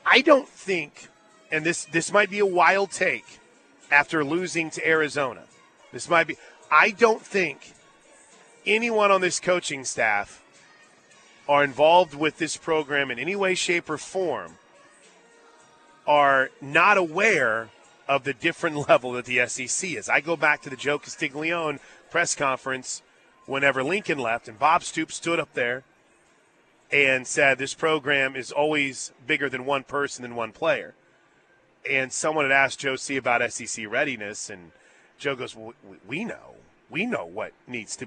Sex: male